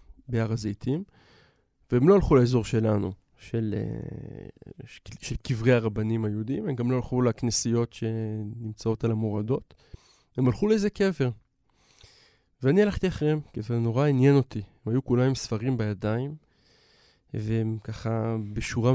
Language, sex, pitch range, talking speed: Hebrew, male, 110-135 Hz, 125 wpm